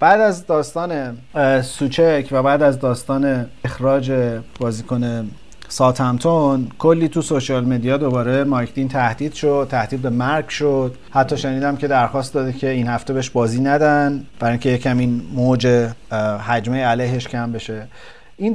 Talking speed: 150 wpm